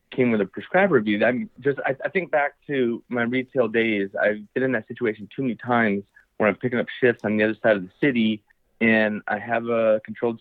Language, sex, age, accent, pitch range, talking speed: English, male, 30-49, American, 100-125 Hz, 230 wpm